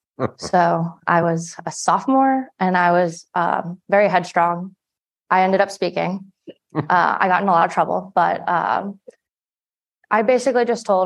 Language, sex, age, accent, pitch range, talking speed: English, female, 20-39, American, 170-190 Hz, 155 wpm